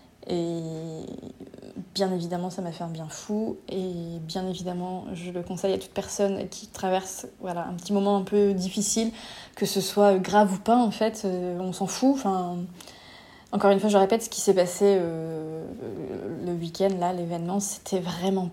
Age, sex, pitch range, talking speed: 20-39, female, 185-210 Hz, 180 wpm